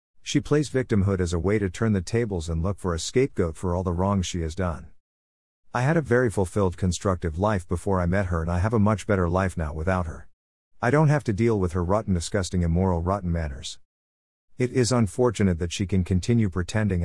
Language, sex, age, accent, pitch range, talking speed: English, male, 50-69, American, 85-115 Hz, 220 wpm